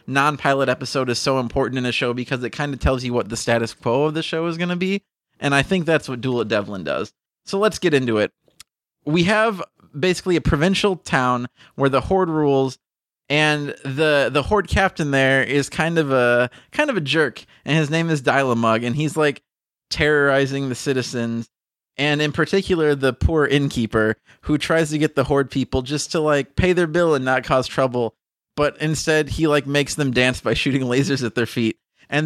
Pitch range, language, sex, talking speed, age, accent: 130-175 Hz, English, male, 205 wpm, 20-39, American